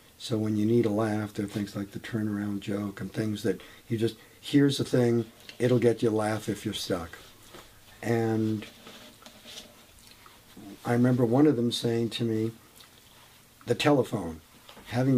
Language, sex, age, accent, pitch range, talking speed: English, male, 50-69, American, 110-125 Hz, 160 wpm